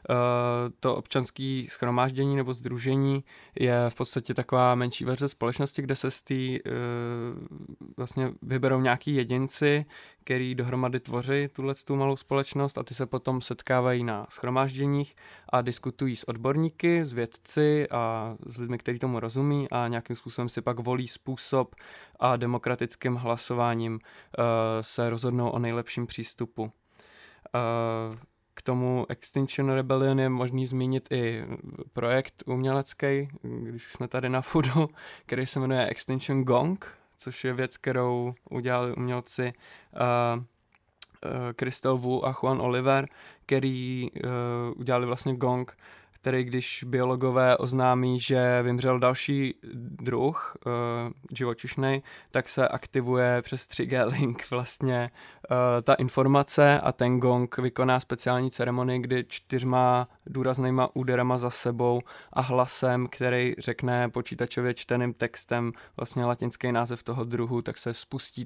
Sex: male